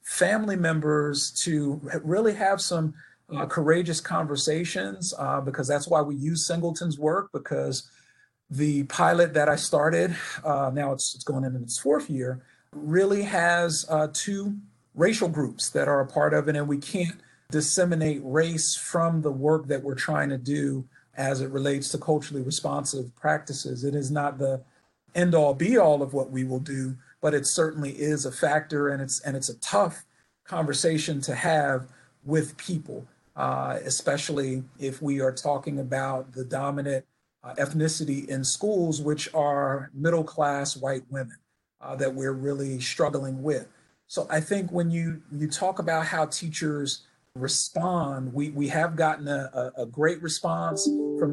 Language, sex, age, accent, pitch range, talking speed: English, male, 40-59, American, 135-160 Hz, 160 wpm